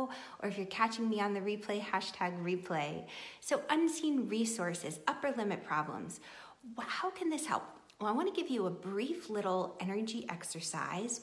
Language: English